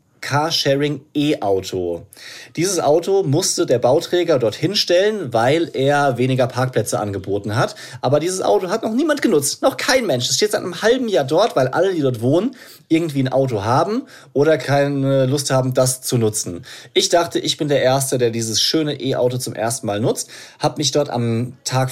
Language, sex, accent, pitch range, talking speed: German, male, German, 125-160 Hz, 185 wpm